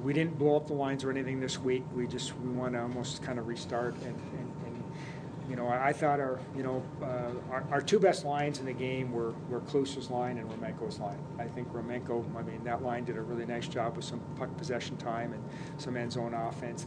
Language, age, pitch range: English, 40-59, 125-150 Hz